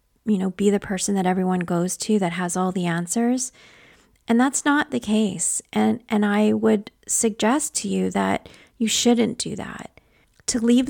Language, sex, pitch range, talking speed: English, female, 190-240 Hz, 180 wpm